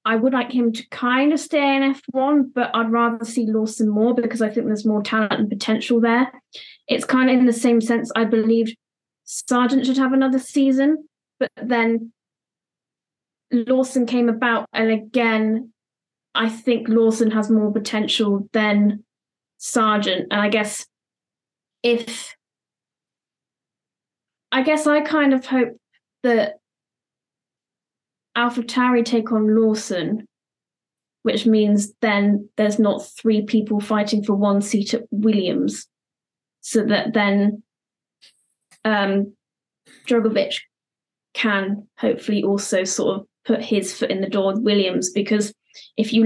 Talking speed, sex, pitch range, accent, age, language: 135 wpm, female, 215-245 Hz, British, 20-39, English